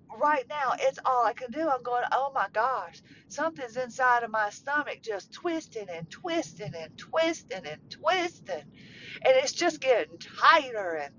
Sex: female